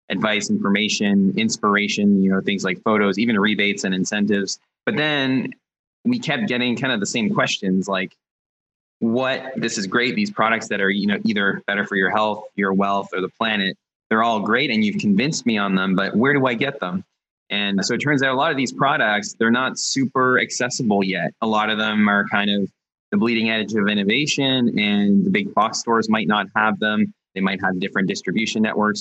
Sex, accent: male, American